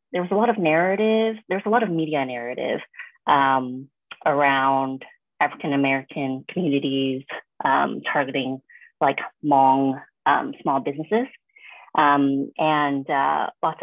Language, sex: English, female